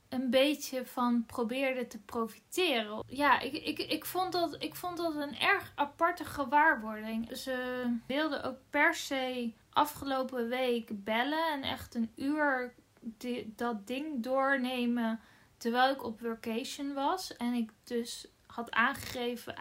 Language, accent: Dutch, Dutch